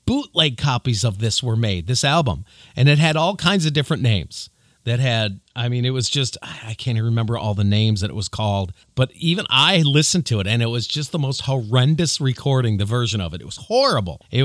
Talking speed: 235 wpm